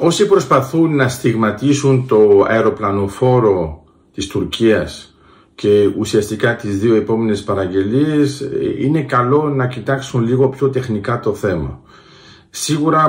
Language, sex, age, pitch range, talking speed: Greek, male, 50-69, 110-150 Hz, 110 wpm